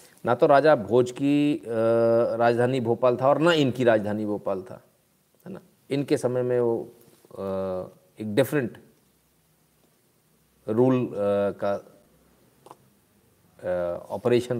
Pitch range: 110-150 Hz